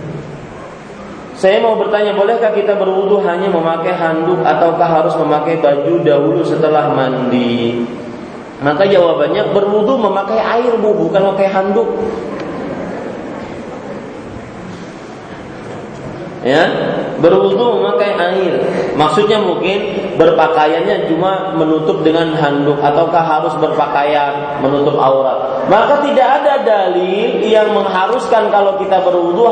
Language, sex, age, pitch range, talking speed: Malay, male, 30-49, 150-200 Hz, 100 wpm